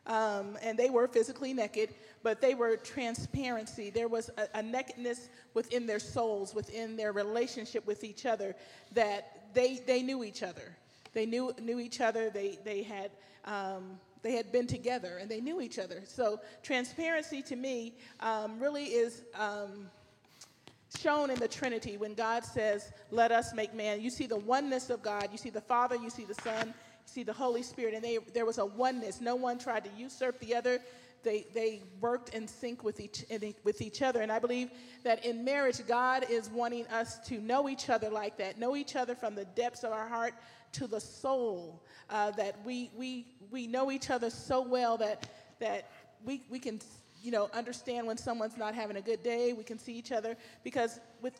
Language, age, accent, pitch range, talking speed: English, 40-59, American, 215-245 Hz, 195 wpm